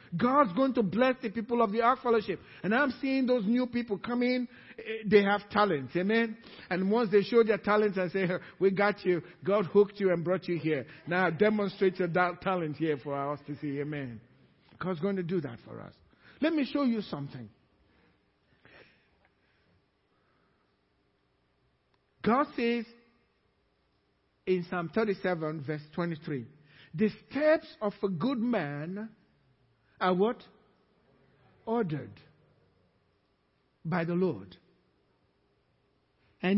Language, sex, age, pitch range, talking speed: English, male, 50-69, 165-240 Hz, 135 wpm